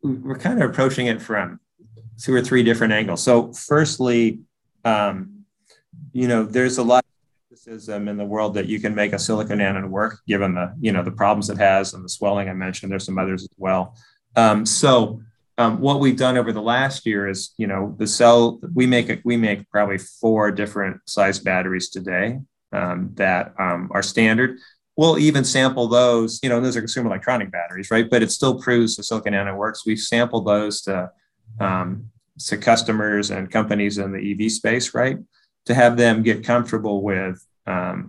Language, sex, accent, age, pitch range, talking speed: English, male, American, 30-49, 100-120 Hz, 190 wpm